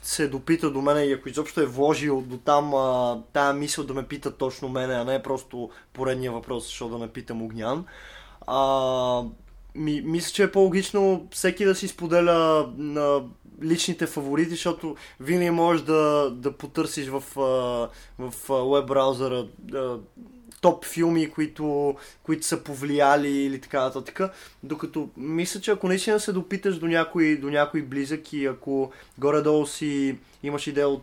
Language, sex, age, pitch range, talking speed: Bulgarian, male, 20-39, 130-160 Hz, 150 wpm